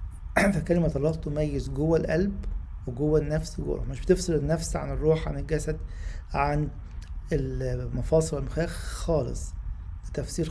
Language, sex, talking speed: English, male, 115 wpm